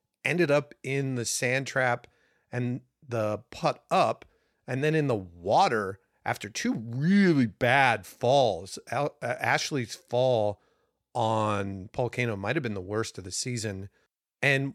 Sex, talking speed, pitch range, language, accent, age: male, 140 wpm, 110-140 Hz, English, American, 40-59